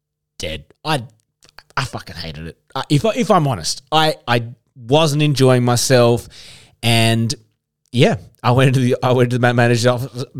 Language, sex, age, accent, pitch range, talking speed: English, male, 20-39, Australian, 110-150 Hz, 165 wpm